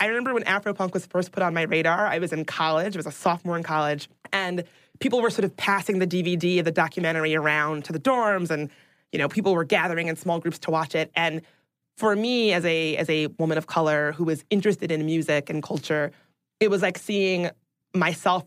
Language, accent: English, American